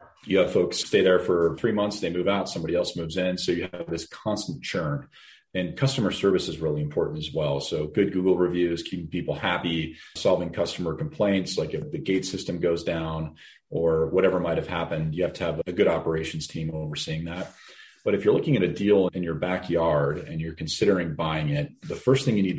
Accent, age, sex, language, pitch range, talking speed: American, 40-59, male, English, 80-95 Hz, 215 wpm